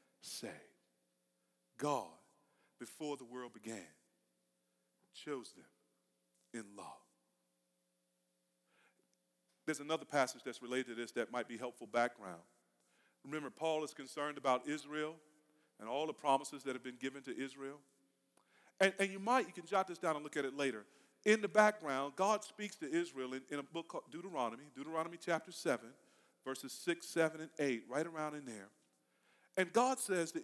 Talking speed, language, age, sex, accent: 160 wpm, English, 40-59, male, American